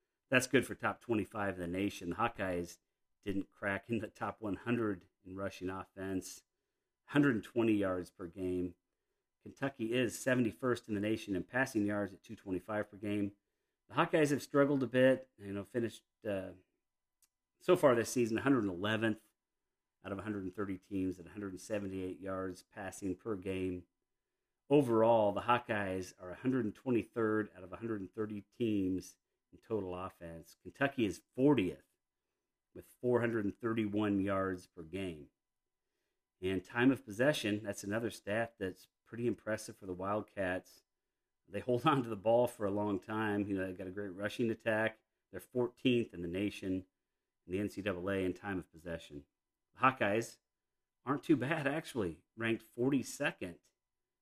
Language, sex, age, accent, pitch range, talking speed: English, male, 40-59, American, 95-115 Hz, 145 wpm